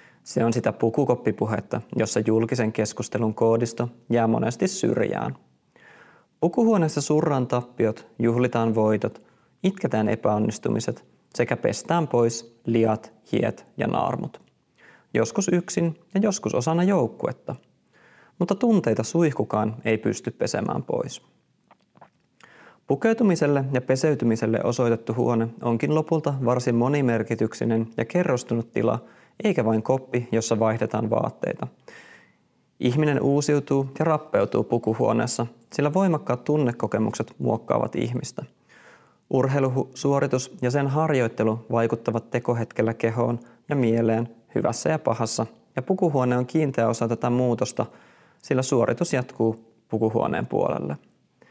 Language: Finnish